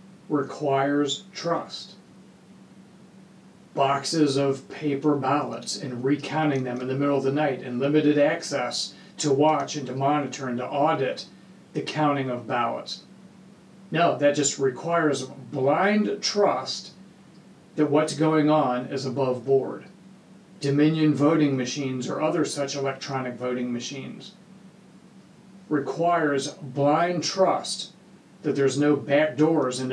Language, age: English, 40-59